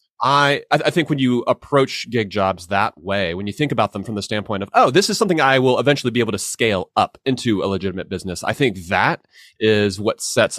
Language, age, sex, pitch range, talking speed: English, 30-49, male, 100-130 Hz, 230 wpm